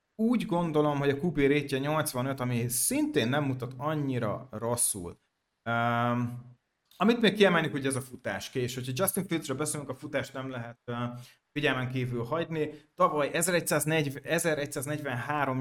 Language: Hungarian